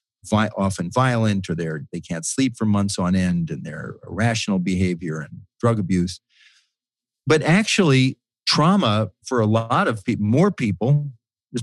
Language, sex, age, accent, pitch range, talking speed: English, male, 50-69, American, 100-135 Hz, 155 wpm